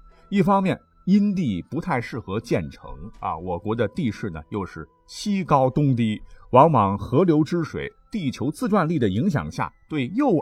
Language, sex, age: Chinese, male, 50-69